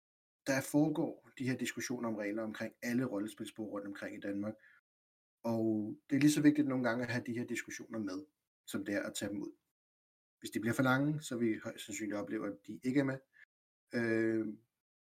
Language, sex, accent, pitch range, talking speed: Danish, male, native, 110-145 Hz, 205 wpm